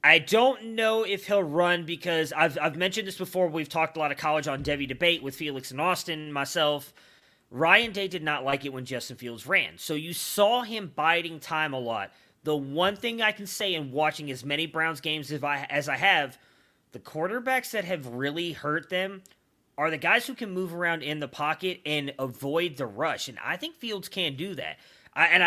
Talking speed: 215 wpm